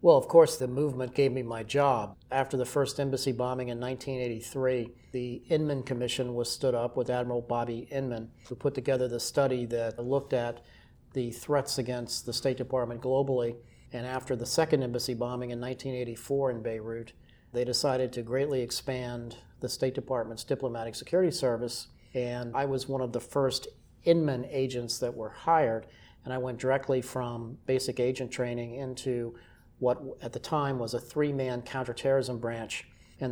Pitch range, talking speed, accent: 120-135 Hz, 170 wpm, American